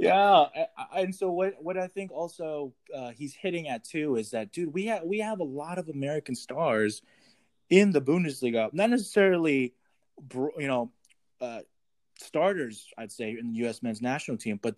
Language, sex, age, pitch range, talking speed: English, male, 20-39, 110-150 Hz, 175 wpm